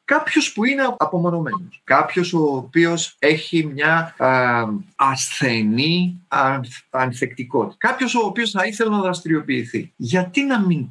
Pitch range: 120-180 Hz